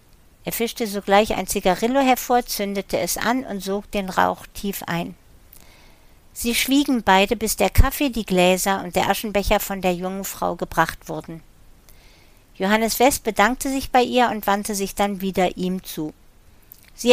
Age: 50-69